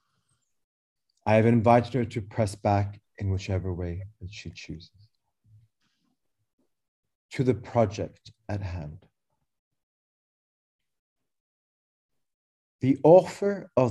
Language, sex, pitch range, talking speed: English, male, 100-130 Hz, 90 wpm